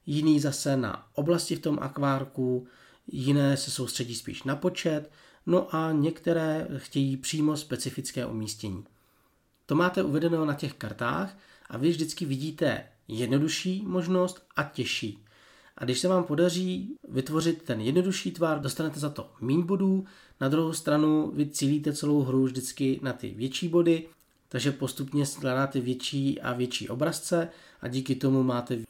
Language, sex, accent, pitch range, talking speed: Czech, male, native, 130-165 Hz, 145 wpm